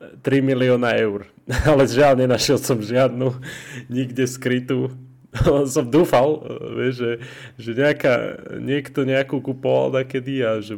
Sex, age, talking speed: male, 20-39, 115 wpm